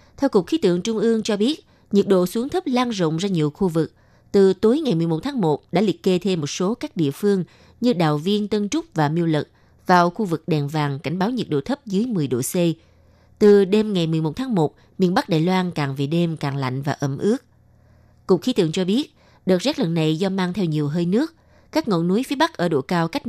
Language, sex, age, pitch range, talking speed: Vietnamese, female, 20-39, 155-210 Hz, 250 wpm